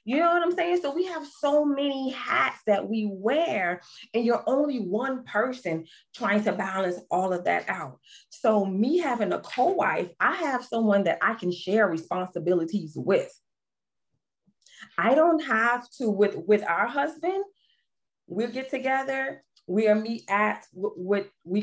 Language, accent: English, American